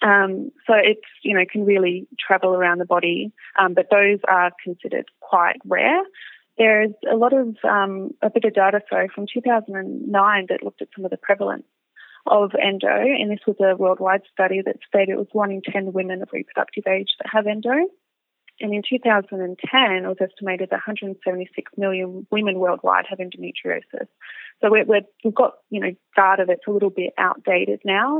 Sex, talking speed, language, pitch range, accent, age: female, 160 wpm, English, 185-215 Hz, Australian, 20-39